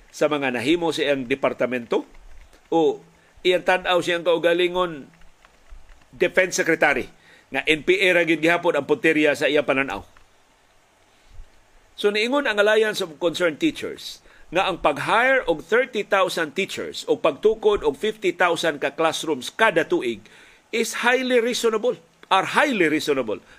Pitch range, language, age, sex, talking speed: 145-215 Hz, Filipino, 50-69, male, 125 wpm